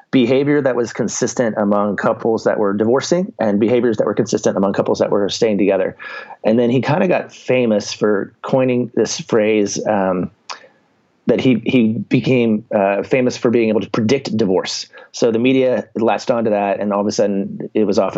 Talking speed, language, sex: 190 wpm, English, male